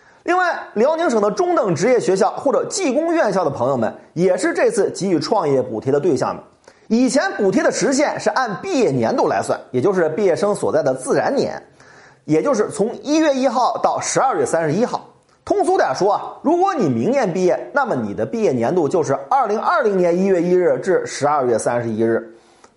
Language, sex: Chinese, male